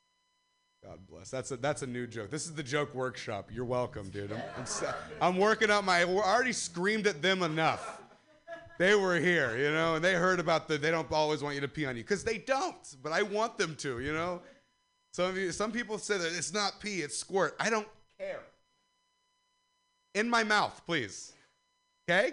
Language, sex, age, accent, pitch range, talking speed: English, male, 30-49, American, 120-190 Hz, 210 wpm